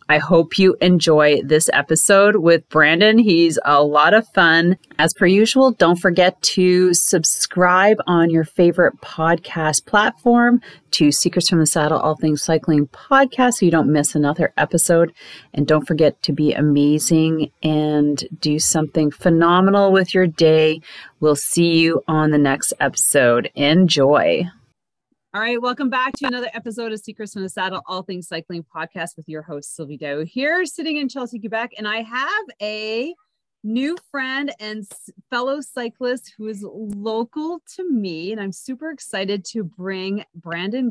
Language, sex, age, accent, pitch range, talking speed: English, female, 30-49, American, 160-220 Hz, 160 wpm